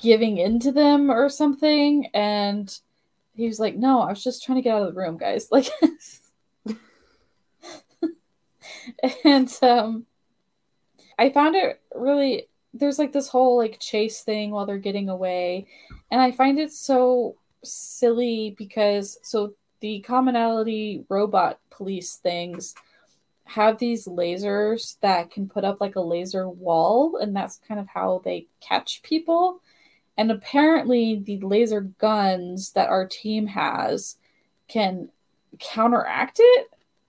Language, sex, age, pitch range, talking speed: English, female, 10-29, 200-265 Hz, 135 wpm